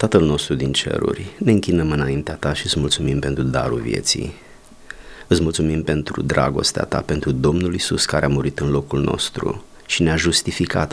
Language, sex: Romanian, male